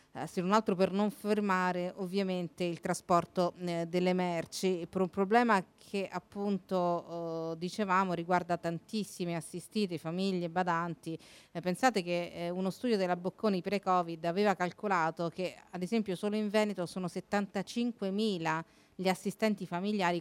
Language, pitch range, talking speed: Italian, 170-200 Hz, 140 wpm